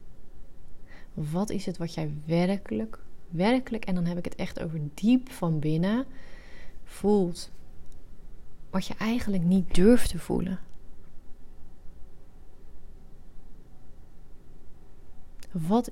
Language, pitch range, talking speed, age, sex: Dutch, 175-205 Hz, 100 wpm, 30-49, female